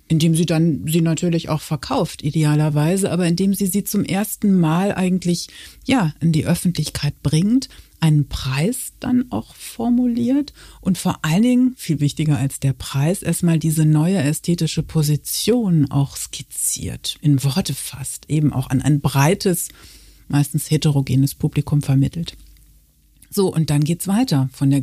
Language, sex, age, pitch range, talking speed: German, female, 60-79, 140-175 Hz, 145 wpm